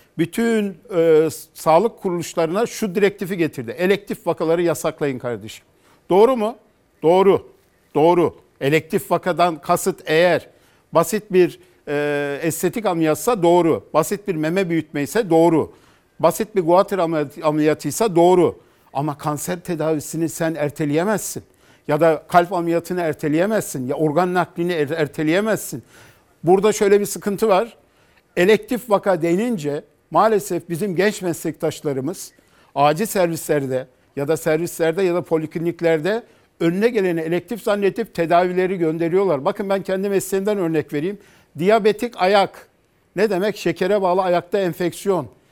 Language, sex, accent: Turkish, male, native